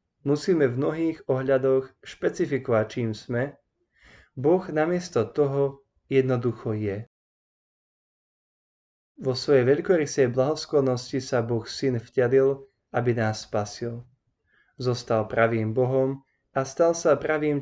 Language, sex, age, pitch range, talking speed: Slovak, male, 20-39, 120-140 Hz, 100 wpm